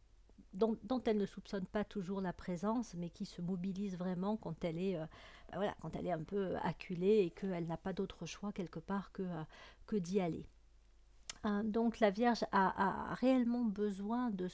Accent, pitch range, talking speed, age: French, 175-205 Hz, 195 wpm, 50-69